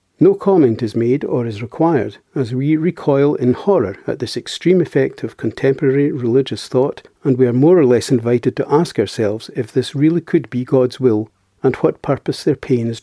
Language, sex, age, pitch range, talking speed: English, male, 60-79, 120-150 Hz, 200 wpm